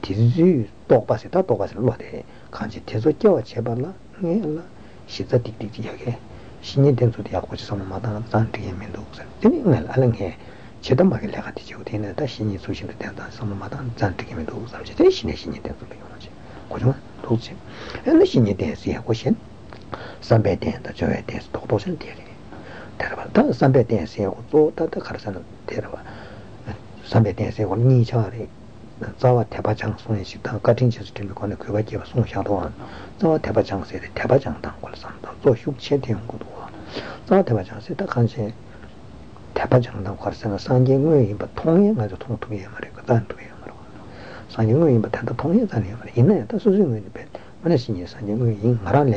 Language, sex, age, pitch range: Italian, male, 60-79, 105-125 Hz